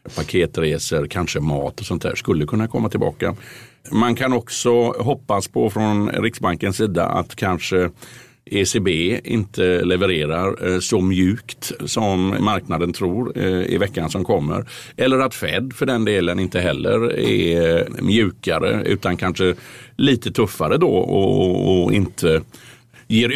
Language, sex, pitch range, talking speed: Swedish, male, 85-110 Hz, 130 wpm